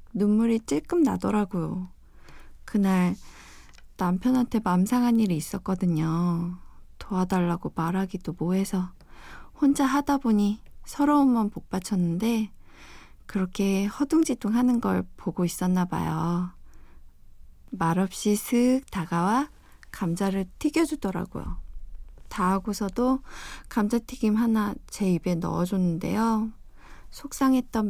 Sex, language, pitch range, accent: female, Korean, 175-240 Hz, native